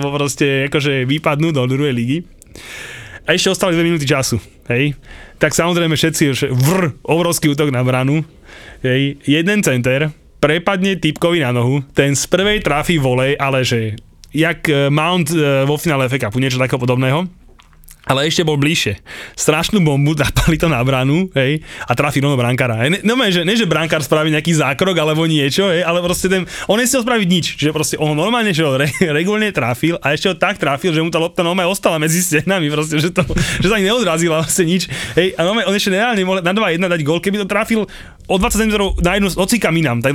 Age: 20-39